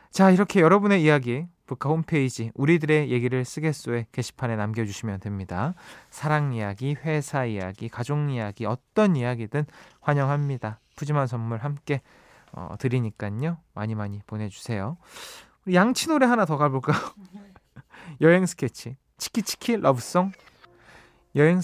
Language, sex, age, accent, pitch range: Korean, male, 20-39, native, 120-180 Hz